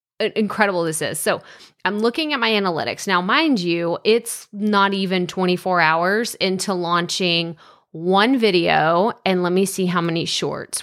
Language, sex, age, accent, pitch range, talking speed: English, female, 20-39, American, 170-210 Hz, 155 wpm